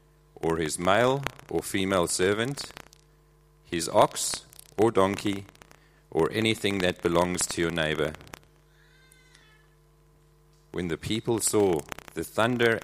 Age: 40-59